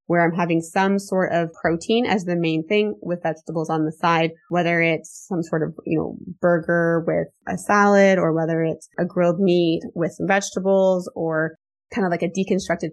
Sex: female